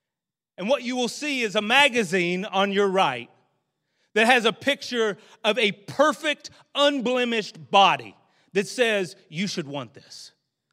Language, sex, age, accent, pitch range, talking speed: English, male, 30-49, American, 215-285 Hz, 145 wpm